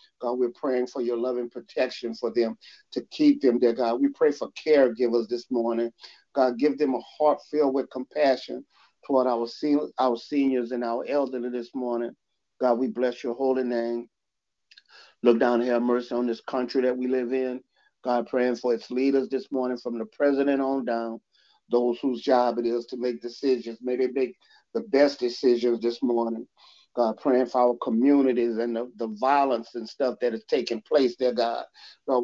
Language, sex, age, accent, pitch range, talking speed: English, male, 50-69, American, 120-135 Hz, 185 wpm